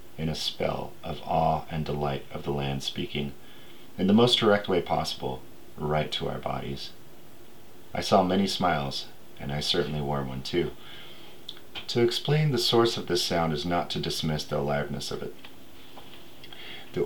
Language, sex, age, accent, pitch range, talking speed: English, male, 40-59, American, 70-85 Hz, 165 wpm